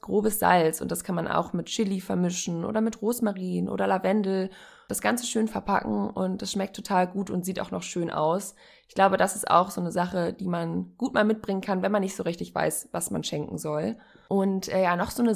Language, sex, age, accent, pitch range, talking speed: German, female, 20-39, German, 180-225 Hz, 235 wpm